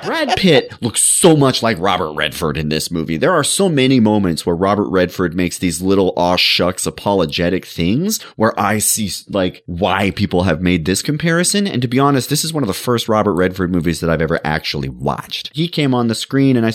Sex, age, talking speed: male, 30-49, 220 wpm